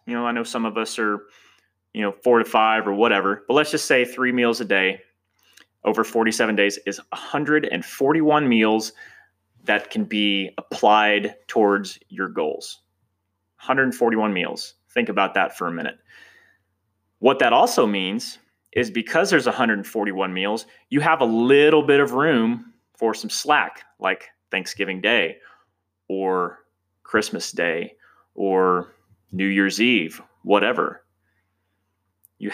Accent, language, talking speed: American, English, 140 wpm